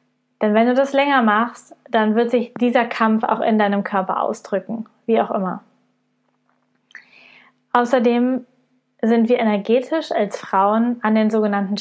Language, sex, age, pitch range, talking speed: German, female, 20-39, 215-245 Hz, 140 wpm